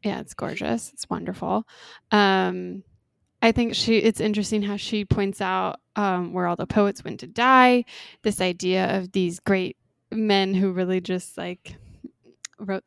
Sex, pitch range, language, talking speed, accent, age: female, 185-220 Hz, English, 160 wpm, American, 20-39